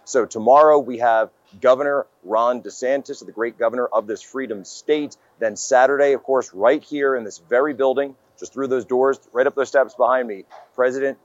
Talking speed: 185 wpm